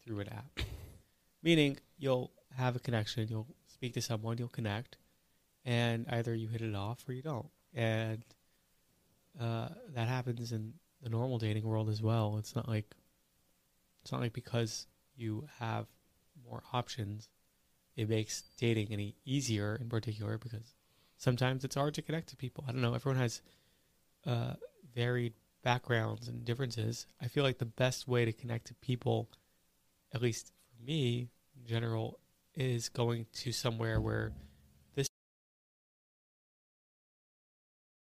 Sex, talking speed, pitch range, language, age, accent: male, 145 wpm, 110-130 Hz, English, 20-39, American